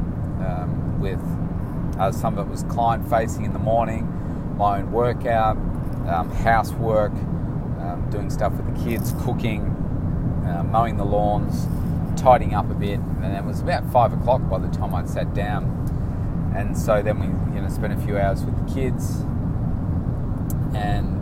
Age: 30-49